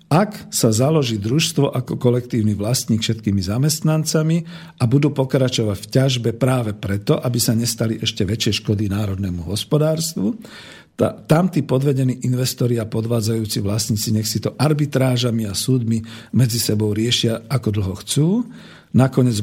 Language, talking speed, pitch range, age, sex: Slovak, 135 wpm, 110-150 Hz, 50-69, male